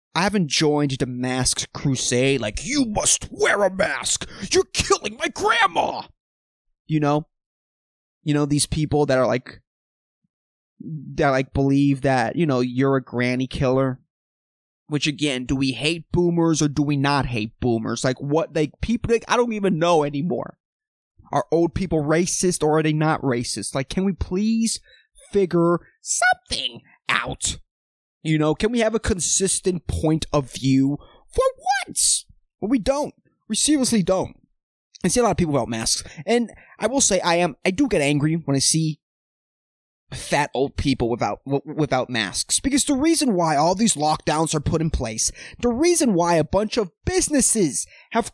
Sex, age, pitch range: male, 20-39, 135-215 Hz